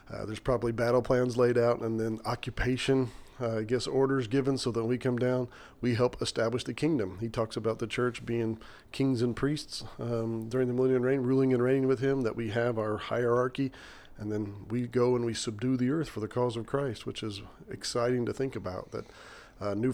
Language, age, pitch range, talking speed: English, 40-59, 110-125 Hz, 220 wpm